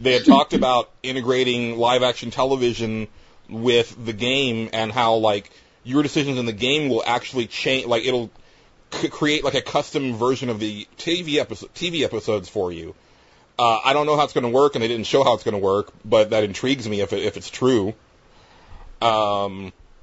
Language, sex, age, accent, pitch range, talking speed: English, male, 30-49, American, 110-130 Hz, 195 wpm